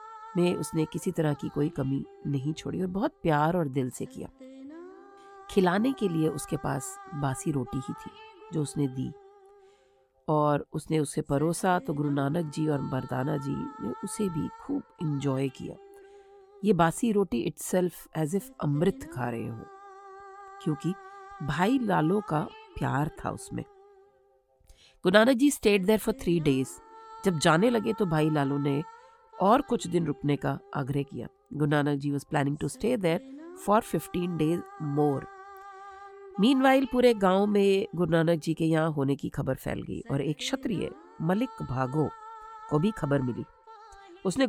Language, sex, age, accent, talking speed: English, female, 40-59, Indian, 150 wpm